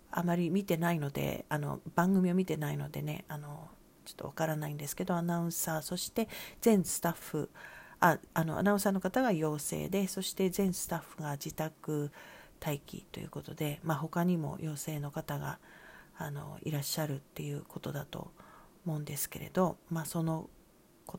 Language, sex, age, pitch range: Japanese, female, 40-59, 150-185 Hz